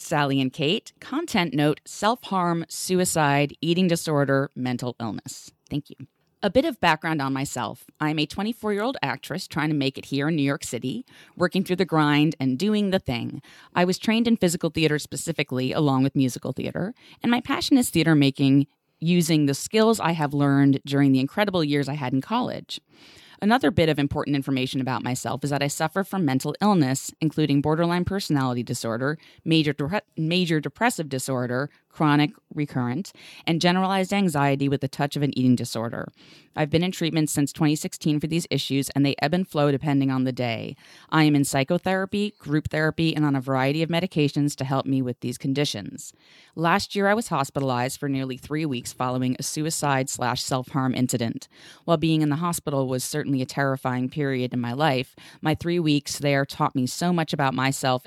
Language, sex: English, female